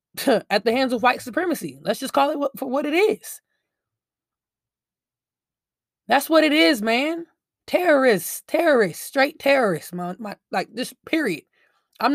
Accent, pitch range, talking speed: American, 195-270 Hz, 135 wpm